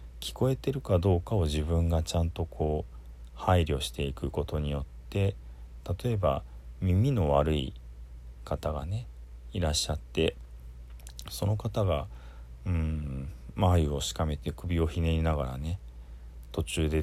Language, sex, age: Japanese, male, 40-59